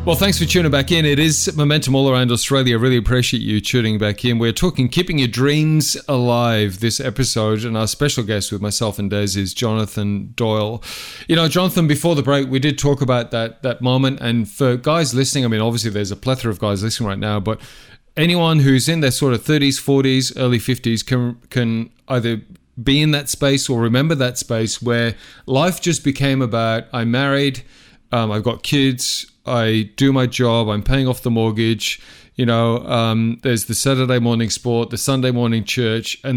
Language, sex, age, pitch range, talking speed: English, male, 30-49, 115-135 Hz, 200 wpm